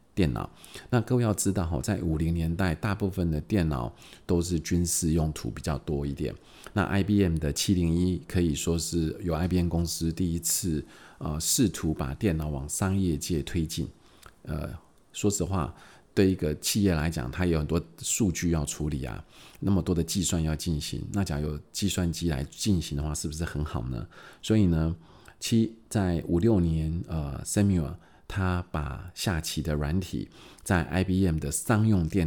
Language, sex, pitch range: Chinese, male, 75-90 Hz